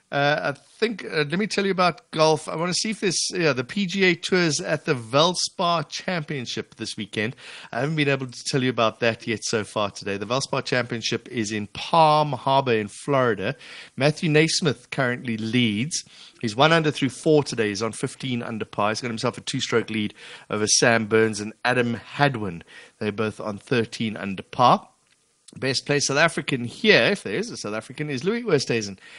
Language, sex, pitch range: English, male, 110-155 Hz